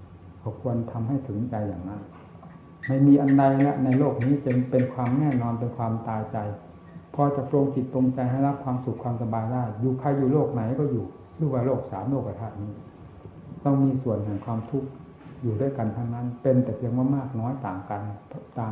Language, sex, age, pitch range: Thai, male, 60-79, 105-130 Hz